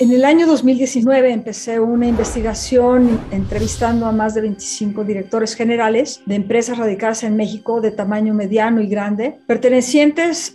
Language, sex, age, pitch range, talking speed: Spanish, female, 40-59, 215-250 Hz, 140 wpm